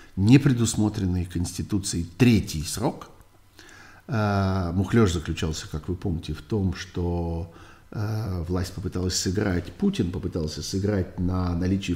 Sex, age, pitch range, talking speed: male, 50-69, 85-105 Hz, 100 wpm